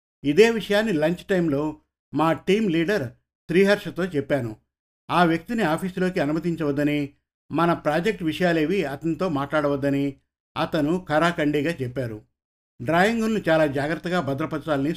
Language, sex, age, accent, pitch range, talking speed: Telugu, male, 50-69, native, 140-180 Hz, 100 wpm